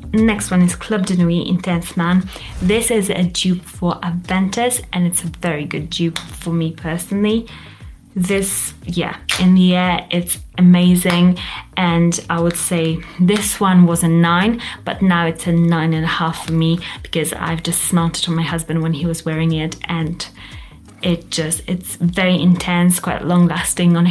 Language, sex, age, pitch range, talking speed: English, female, 20-39, 170-185 Hz, 175 wpm